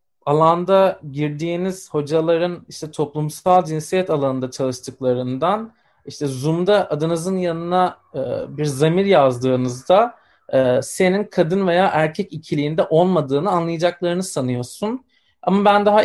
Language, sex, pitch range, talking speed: Turkish, male, 150-185 Hz, 95 wpm